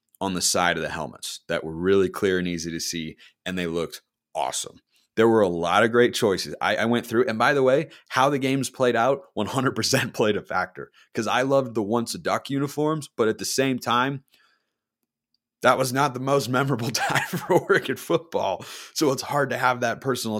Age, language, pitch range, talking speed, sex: 30-49, English, 90-125 Hz, 210 wpm, male